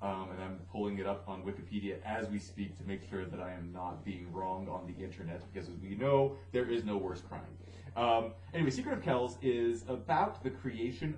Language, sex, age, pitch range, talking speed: English, male, 30-49, 90-125 Hz, 220 wpm